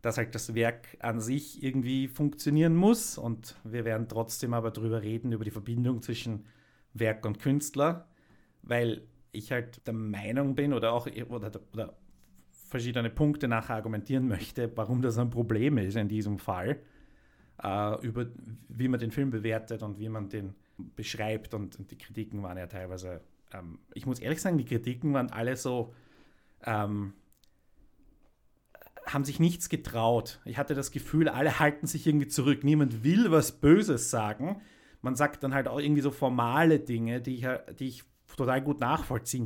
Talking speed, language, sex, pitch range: 165 wpm, German, male, 115-145 Hz